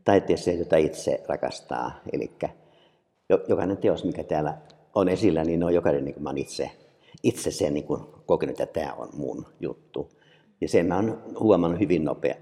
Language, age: Finnish, 60-79